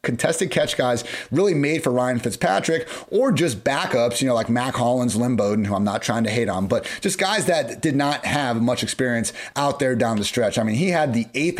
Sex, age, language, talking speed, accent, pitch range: male, 30-49, English, 235 wpm, American, 120-155 Hz